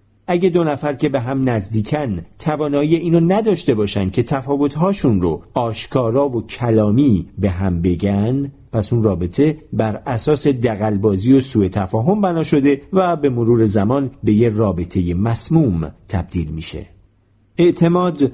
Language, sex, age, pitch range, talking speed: Persian, male, 50-69, 105-150 Hz, 135 wpm